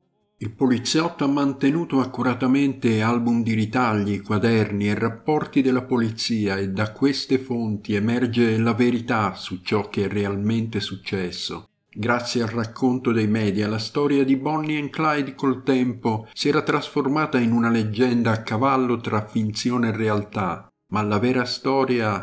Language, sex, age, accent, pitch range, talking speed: Italian, male, 50-69, native, 105-130 Hz, 150 wpm